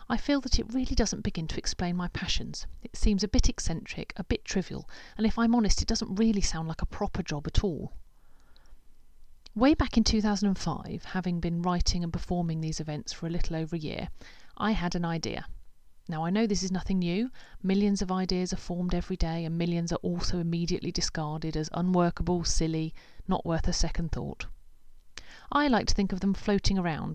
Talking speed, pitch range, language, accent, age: 200 wpm, 160-200 Hz, English, British, 40-59